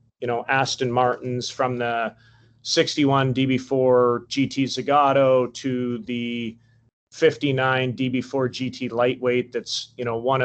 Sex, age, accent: male, 30-49, American